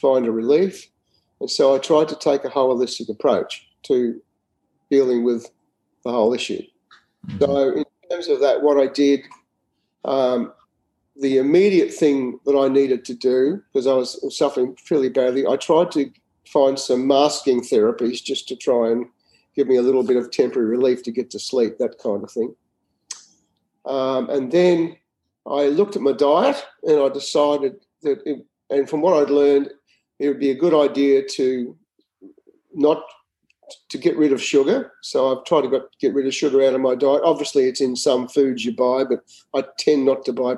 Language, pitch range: English, 130-150 Hz